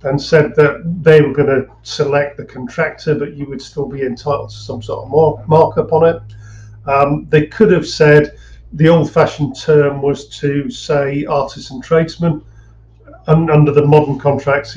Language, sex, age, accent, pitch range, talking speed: English, male, 50-69, British, 125-155 Hz, 180 wpm